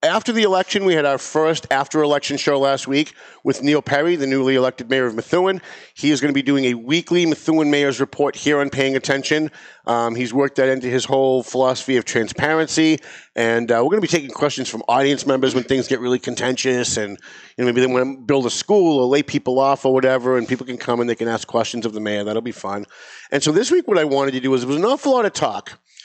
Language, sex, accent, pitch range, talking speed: English, male, American, 130-175 Hz, 250 wpm